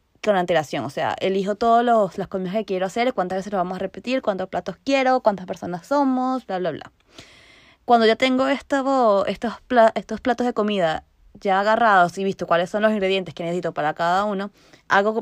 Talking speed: 190 wpm